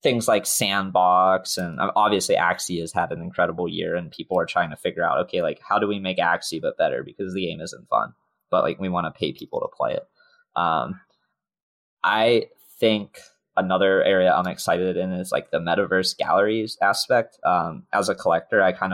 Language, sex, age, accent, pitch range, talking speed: English, male, 20-39, American, 90-105 Hz, 195 wpm